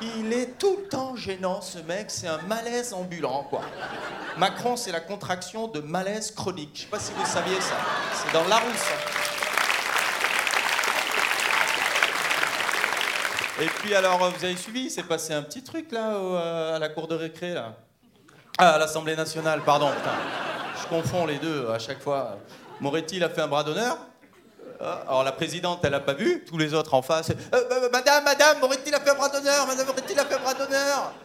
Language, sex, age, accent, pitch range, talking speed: French, male, 30-49, French, 165-240 Hz, 185 wpm